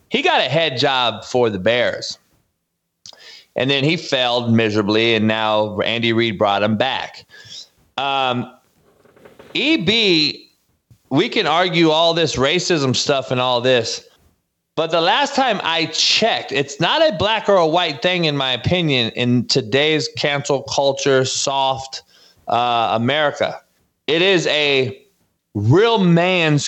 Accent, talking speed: American, 135 wpm